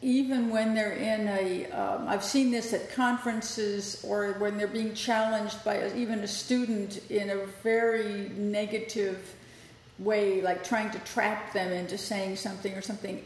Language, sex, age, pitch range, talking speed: English, female, 50-69, 205-245 Hz, 160 wpm